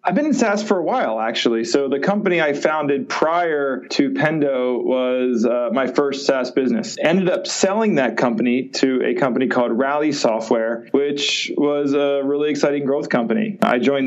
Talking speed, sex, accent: 180 wpm, male, American